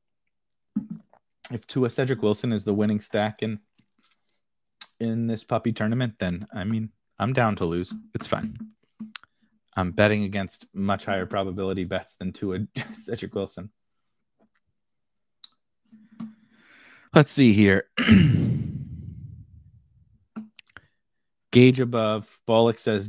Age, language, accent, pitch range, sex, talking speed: 30-49, English, American, 95-135 Hz, male, 105 wpm